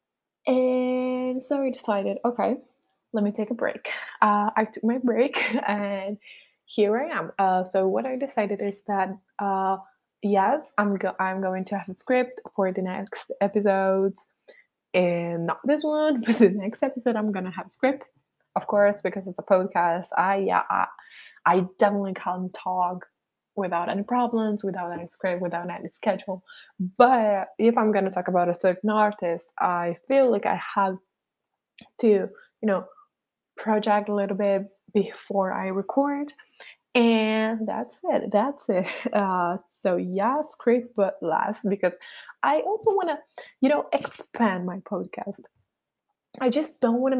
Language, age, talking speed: English, 20-39, 160 wpm